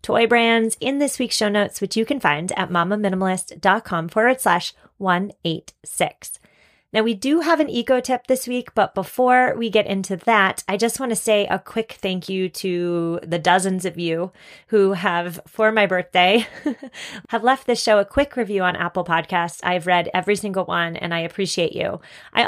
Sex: female